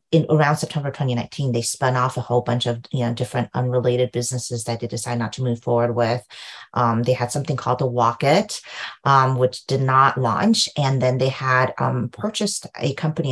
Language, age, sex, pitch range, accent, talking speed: English, 40-59, female, 125-150 Hz, American, 190 wpm